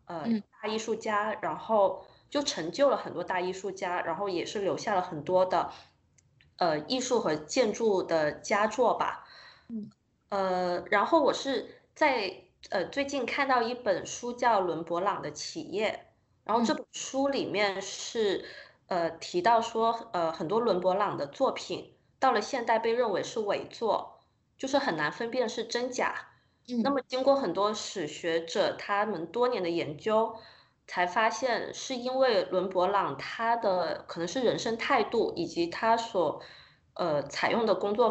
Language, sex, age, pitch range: Chinese, female, 20-39, 185-250 Hz